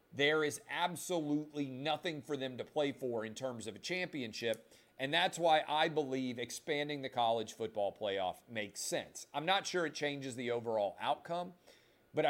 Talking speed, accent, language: 170 wpm, American, English